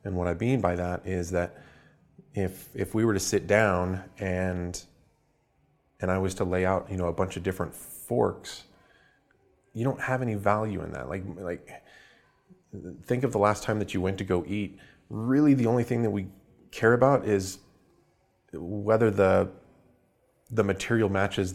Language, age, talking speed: English, 30-49, 175 wpm